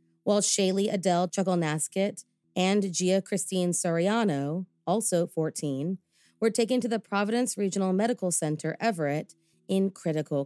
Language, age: English, 30-49